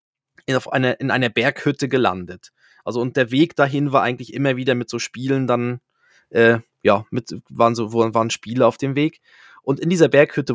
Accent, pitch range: German, 120-145 Hz